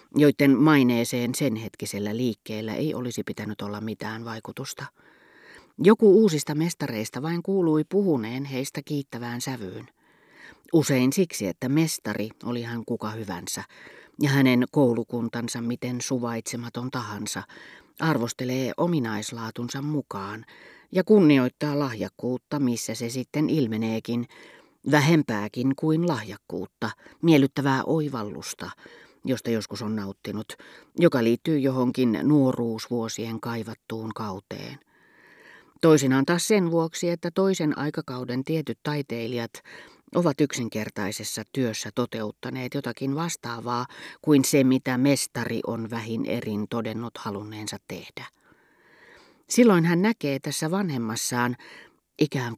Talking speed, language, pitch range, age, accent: 105 wpm, Finnish, 115-145 Hz, 40-59, native